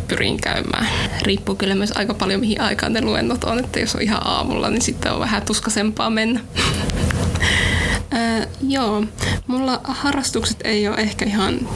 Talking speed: 160 wpm